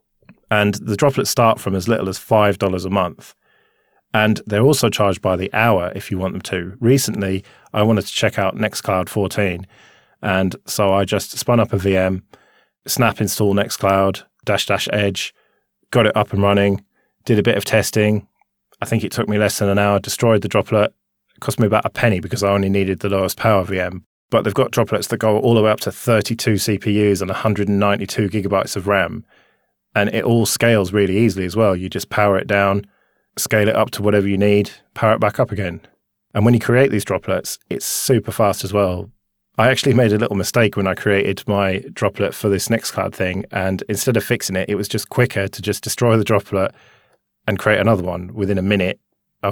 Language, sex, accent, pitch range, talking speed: English, male, British, 100-115 Hz, 210 wpm